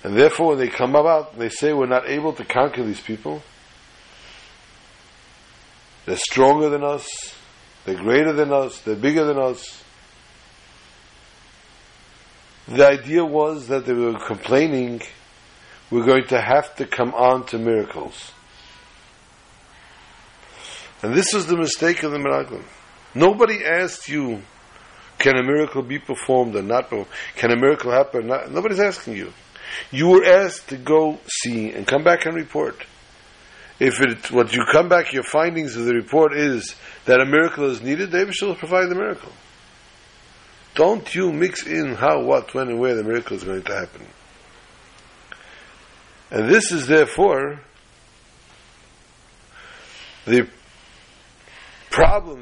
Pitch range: 120-160 Hz